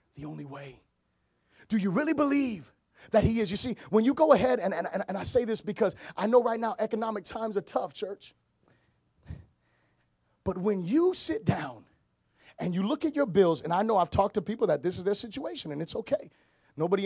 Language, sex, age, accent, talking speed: English, male, 30-49, American, 210 wpm